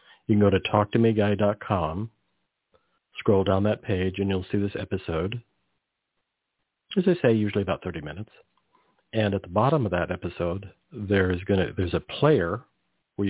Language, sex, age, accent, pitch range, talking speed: English, male, 50-69, American, 90-110 Hz, 150 wpm